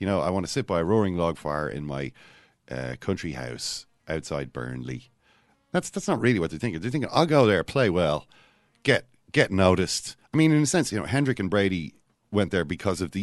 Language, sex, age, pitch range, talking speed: English, male, 40-59, 80-110 Hz, 225 wpm